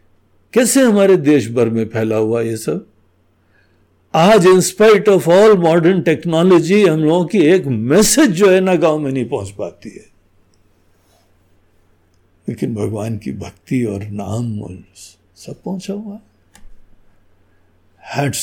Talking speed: 125 wpm